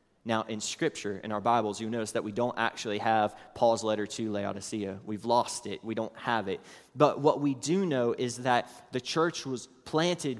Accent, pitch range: American, 110-140 Hz